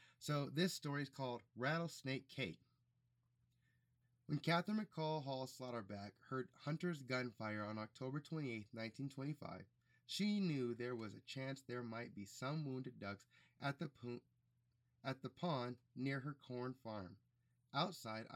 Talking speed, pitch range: 135 wpm, 120-150 Hz